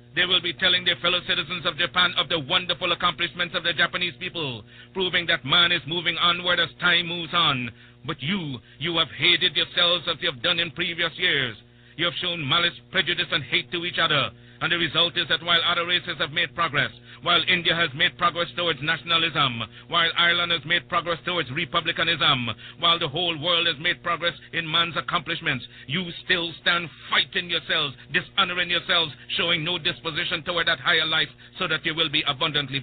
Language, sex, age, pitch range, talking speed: English, male, 50-69, 150-175 Hz, 190 wpm